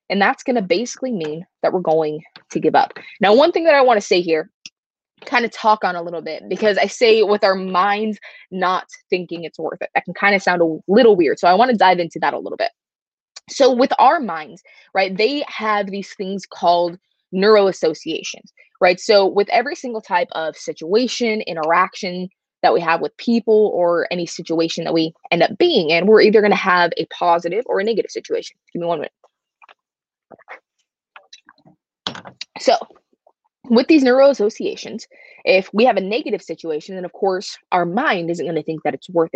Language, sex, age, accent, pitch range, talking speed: English, female, 20-39, American, 170-235 Hz, 195 wpm